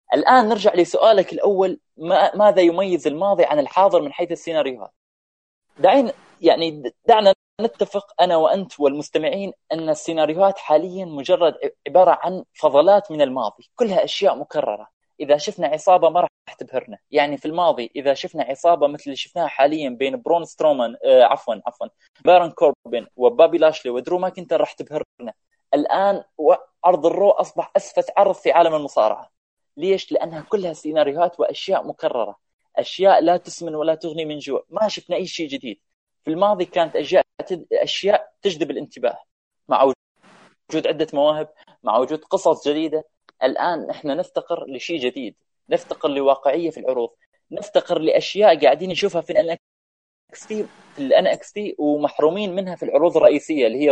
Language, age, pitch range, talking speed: Arabic, 20-39, 150-200 Hz, 145 wpm